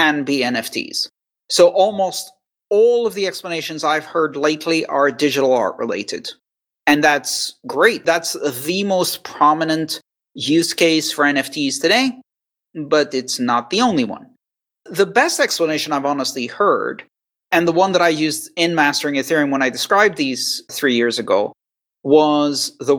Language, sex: English, male